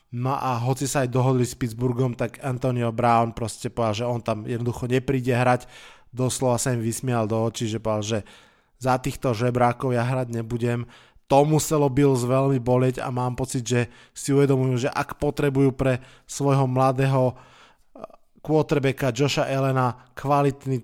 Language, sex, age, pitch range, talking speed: Slovak, male, 20-39, 120-130 Hz, 160 wpm